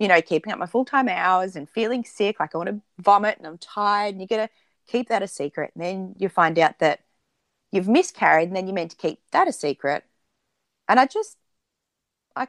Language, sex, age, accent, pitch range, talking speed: English, female, 30-49, Australian, 165-230 Hz, 225 wpm